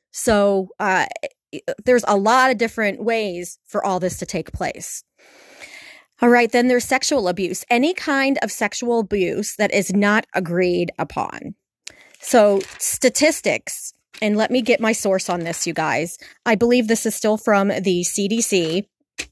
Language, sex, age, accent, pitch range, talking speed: English, female, 30-49, American, 195-245 Hz, 155 wpm